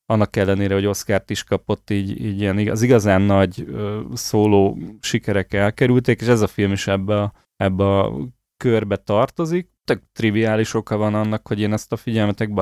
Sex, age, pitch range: male, 30-49, 100-115 Hz